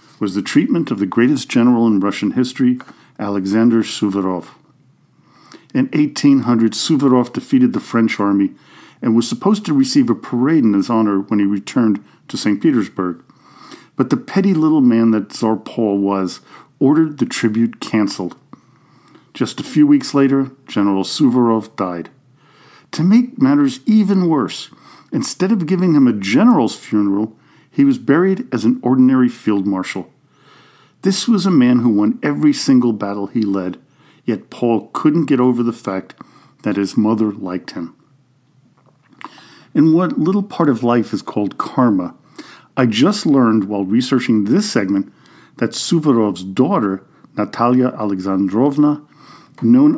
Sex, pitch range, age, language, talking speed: male, 105-150 Hz, 50-69, English, 145 wpm